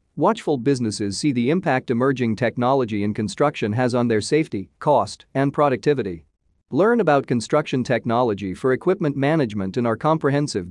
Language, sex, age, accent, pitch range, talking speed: English, male, 40-59, American, 105-150 Hz, 145 wpm